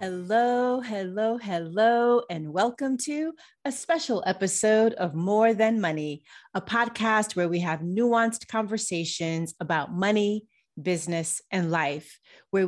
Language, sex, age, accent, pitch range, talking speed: English, female, 30-49, American, 170-235 Hz, 125 wpm